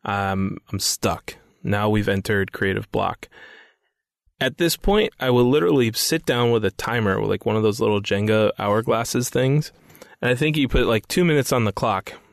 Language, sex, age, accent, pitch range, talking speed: English, male, 20-39, American, 105-135 Hz, 190 wpm